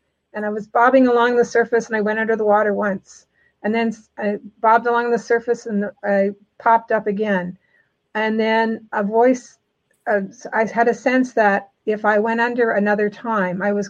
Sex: female